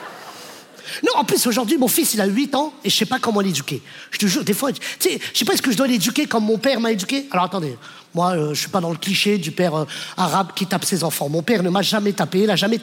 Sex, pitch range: male, 200-285 Hz